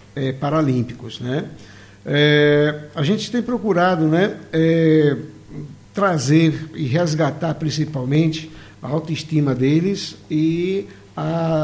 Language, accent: Portuguese, Brazilian